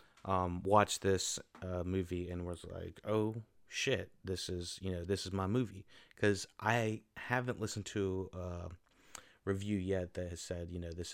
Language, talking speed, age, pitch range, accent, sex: English, 170 wpm, 30-49, 95-110 Hz, American, male